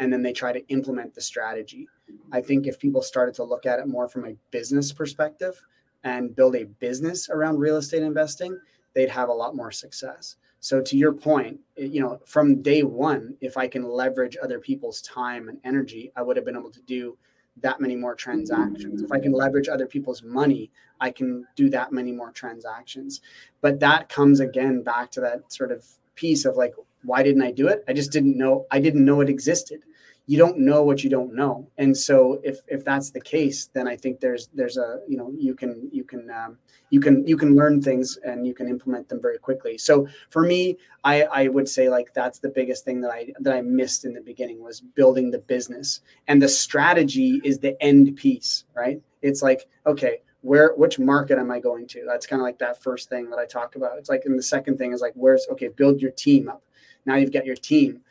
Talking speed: 225 wpm